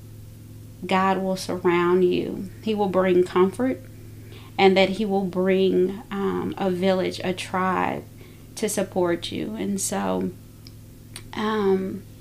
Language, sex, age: English, female, 30-49